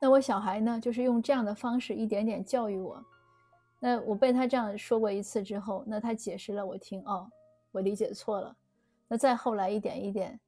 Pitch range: 200-245 Hz